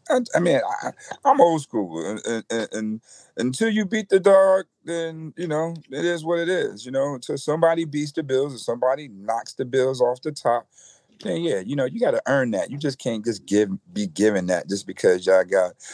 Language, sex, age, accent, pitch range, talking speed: English, male, 40-59, American, 100-140 Hz, 215 wpm